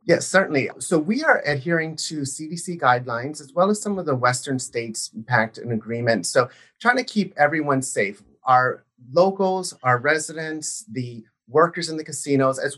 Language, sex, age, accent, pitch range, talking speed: English, male, 30-49, American, 125-155 Hz, 170 wpm